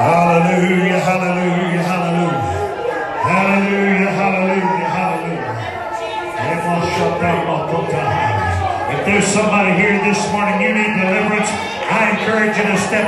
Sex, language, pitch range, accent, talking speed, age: male, English, 185-235 Hz, American, 90 wpm, 40-59